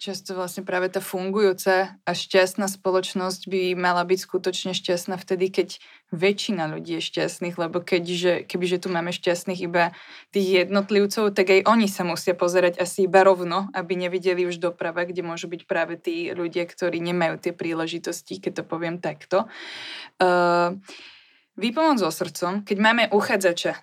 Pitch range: 175-200 Hz